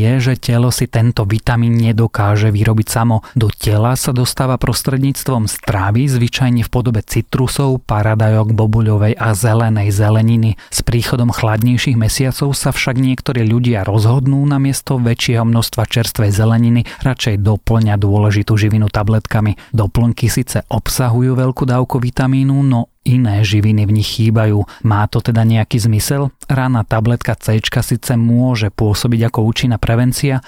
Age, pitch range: 30-49, 110-130 Hz